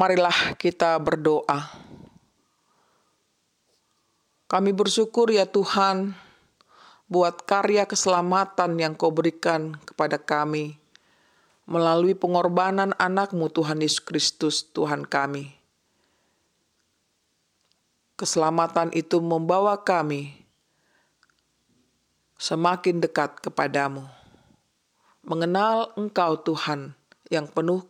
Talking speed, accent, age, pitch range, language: 75 wpm, native, 40-59, 150-185 Hz, Indonesian